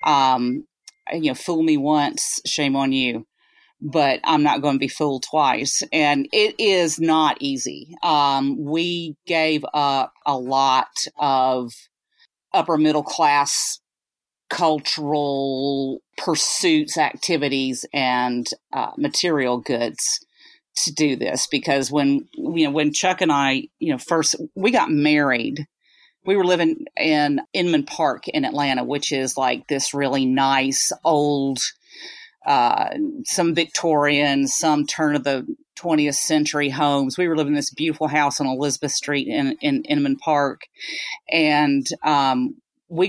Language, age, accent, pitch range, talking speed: English, 40-59, American, 140-180 Hz, 135 wpm